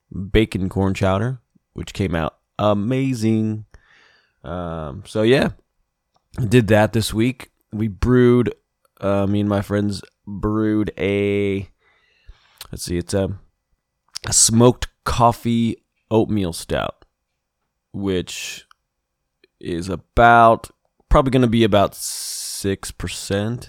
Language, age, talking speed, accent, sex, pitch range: English, 20-39, 110 wpm, American, male, 95-120 Hz